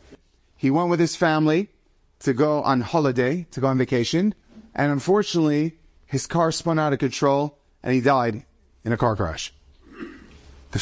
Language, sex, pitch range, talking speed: English, male, 110-165 Hz, 160 wpm